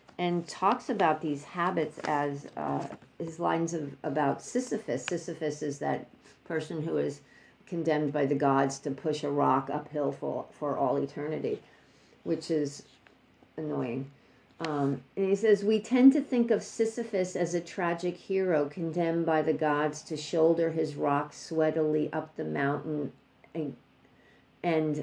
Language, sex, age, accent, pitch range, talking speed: English, female, 50-69, American, 145-175 Hz, 150 wpm